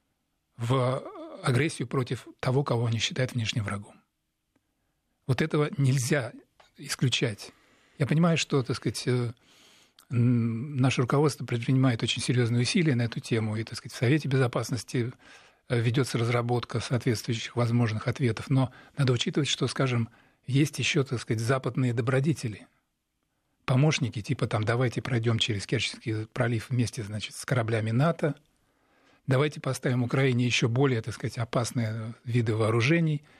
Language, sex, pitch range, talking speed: Russian, male, 120-145 Hz, 130 wpm